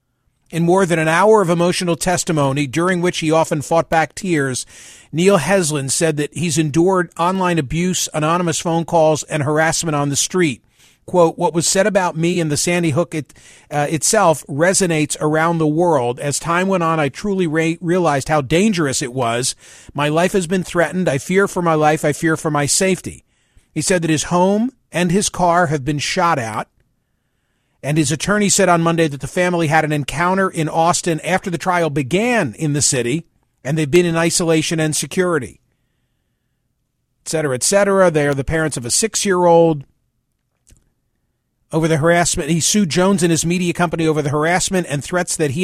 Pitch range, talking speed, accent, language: 150-175 Hz, 185 wpm, American, English